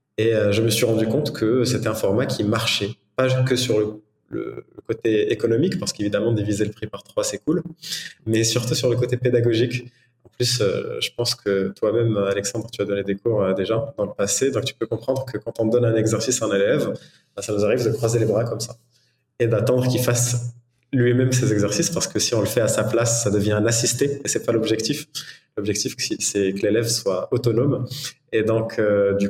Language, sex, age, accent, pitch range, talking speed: French, male, 20-39, French, 110-125 Hz, 220 wpm